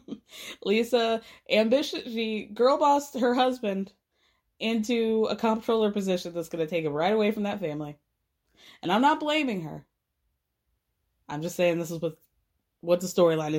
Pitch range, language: 190-275 Hz, English